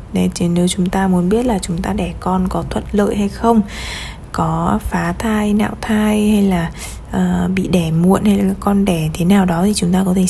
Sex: female